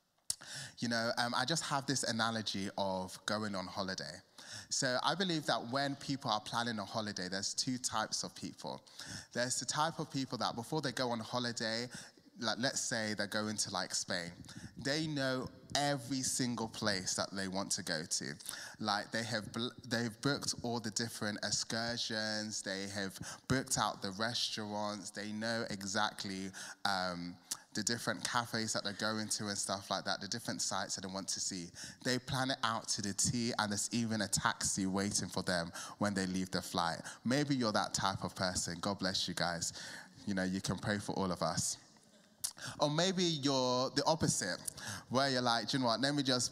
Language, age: English, 20-39